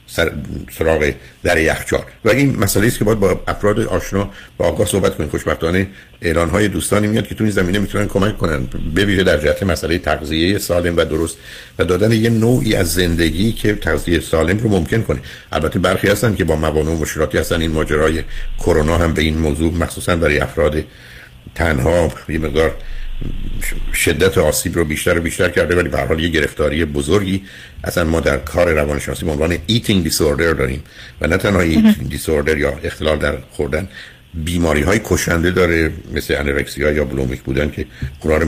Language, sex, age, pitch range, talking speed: Persian, male, 60-79, 75-95 Hz, 175 wpm